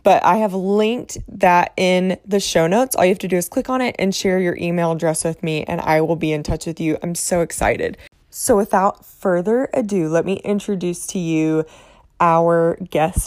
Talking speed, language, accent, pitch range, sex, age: 215 wpm, English, American, 165-195 Hz, female, 20-39